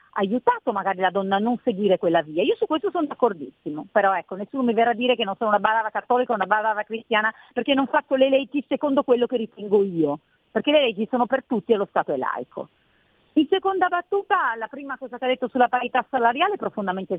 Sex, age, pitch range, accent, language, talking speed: female, 40-59, 195-285 Hz, native, Italian, 230 wpm